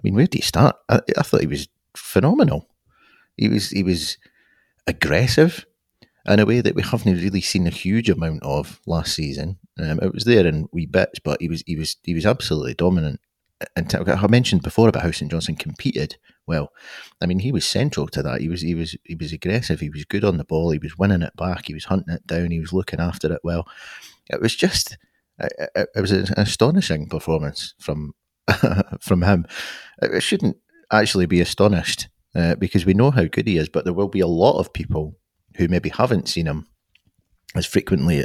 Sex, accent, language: male, British, English